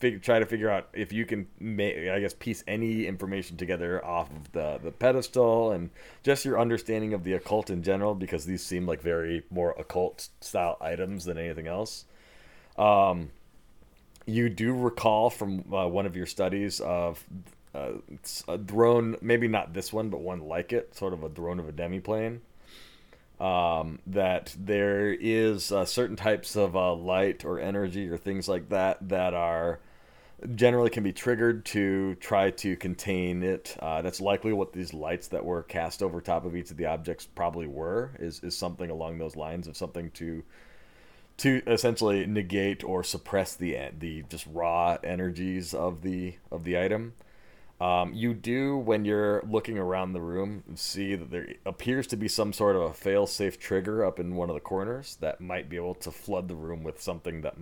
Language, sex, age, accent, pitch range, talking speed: English, male, 30-49, American, 85-110 Hz, 185 wpm